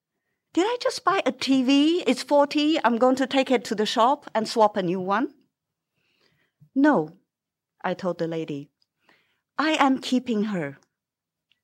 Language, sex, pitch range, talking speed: English, female, 160-235 Hz, 155 wpm